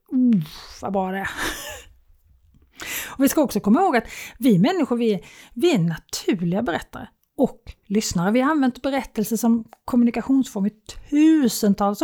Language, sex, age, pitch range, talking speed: Swedish, female, 30-49, 195-255 Hz, 135 wpm